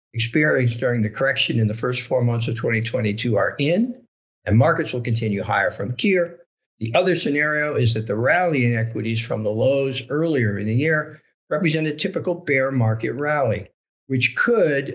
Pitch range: 115-145 Hz